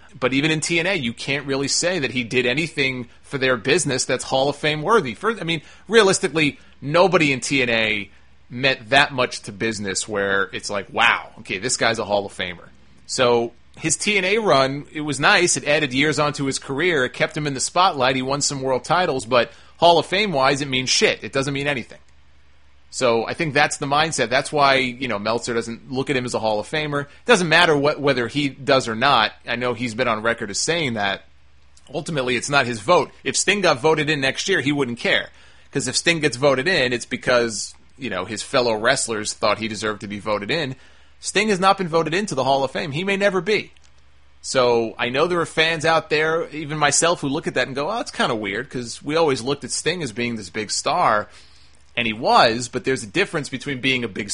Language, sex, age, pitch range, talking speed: English, male, 30-49, 115-155 Hz, 230 wpm